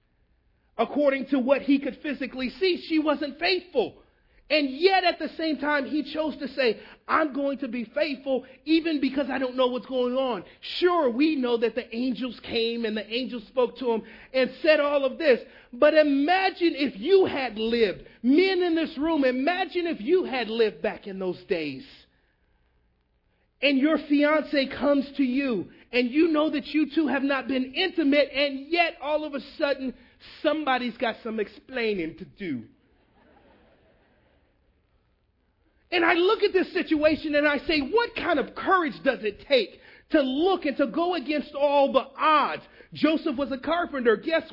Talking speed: 175 wpm